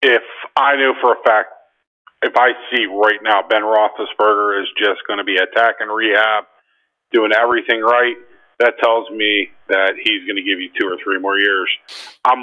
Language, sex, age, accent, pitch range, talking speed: English, male, 40-59, American, 110-125 Hz, 185 wpm